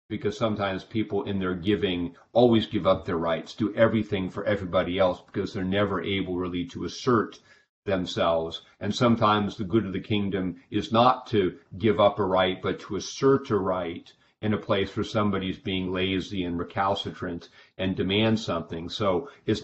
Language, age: English, 40-59